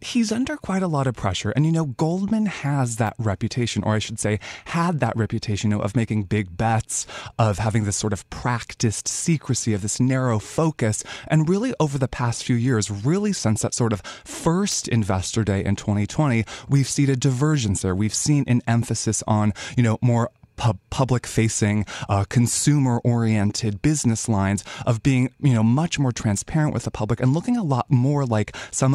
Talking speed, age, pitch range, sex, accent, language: 185 wpm, 20-39, 110-135 Hz, male, American, English